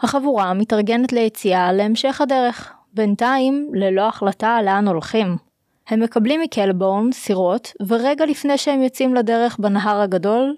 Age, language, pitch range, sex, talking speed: 20-39, Hebrew, 195-255 Hz, female, 120 wpm